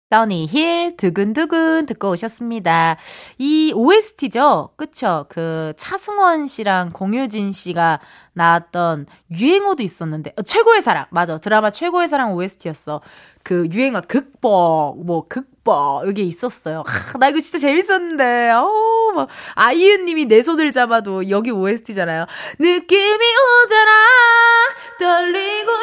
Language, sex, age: Korean, female, 20-39